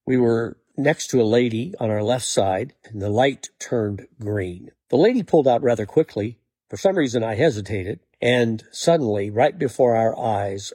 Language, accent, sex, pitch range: English, American, male, 100-130 Hz